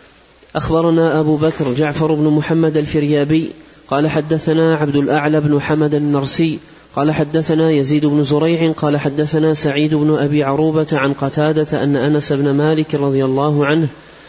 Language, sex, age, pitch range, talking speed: Arabic, male, 30-49, 150-155 Hz, 145 wpm